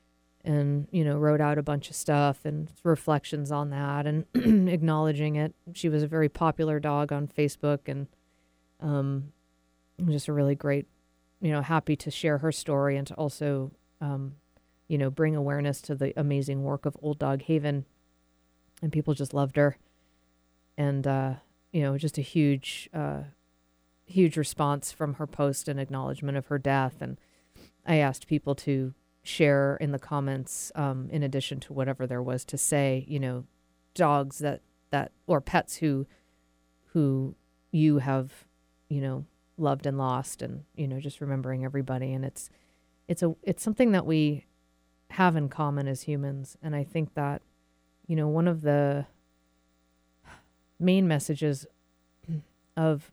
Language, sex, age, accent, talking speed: English, female, 40-59, American, 160 wpm